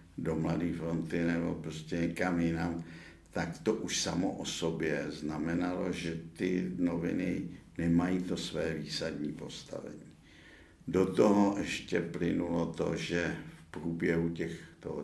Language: Czech